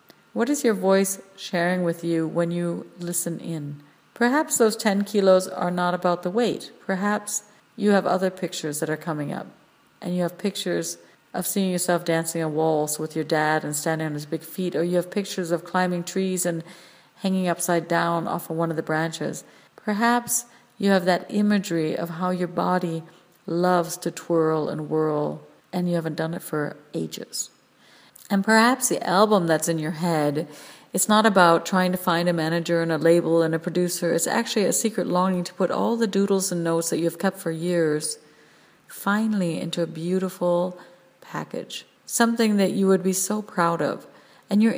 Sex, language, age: female, English, 50-69